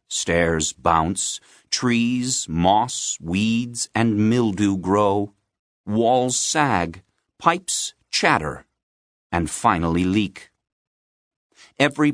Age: 50-69